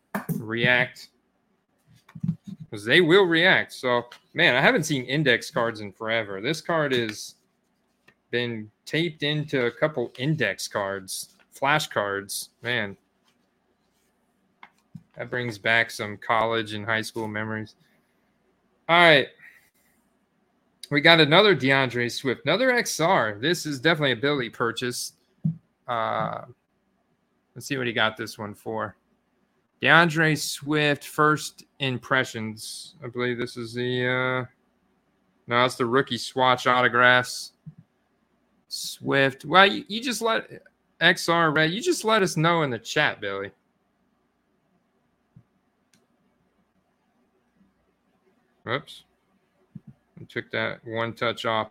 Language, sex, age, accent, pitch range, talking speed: English, male, 20-39, American, 115-155 Hz, 115 wpm